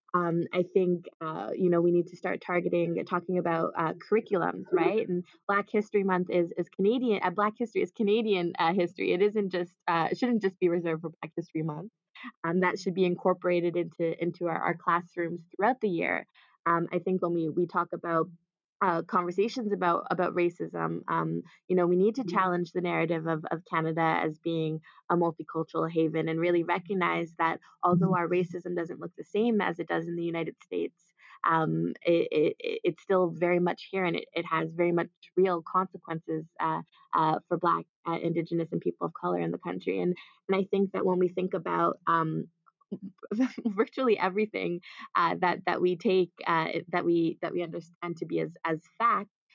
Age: 20-39